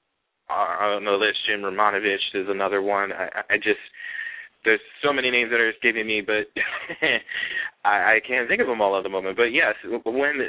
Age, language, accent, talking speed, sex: 20-39, English, American, 190 wpm, male